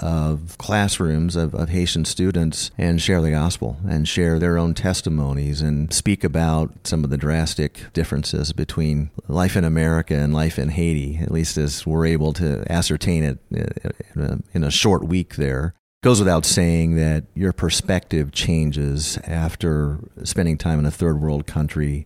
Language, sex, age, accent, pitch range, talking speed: English, male, 40-59, American, 75-90 Hz, 170 wpm